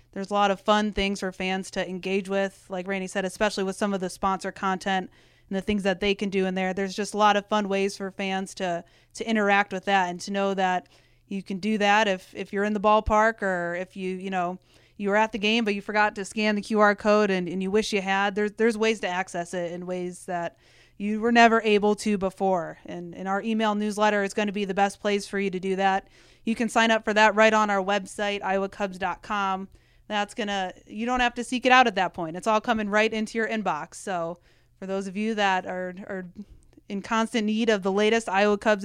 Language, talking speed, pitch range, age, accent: English, 245 wpm, 190-215 Hz, 30-49, American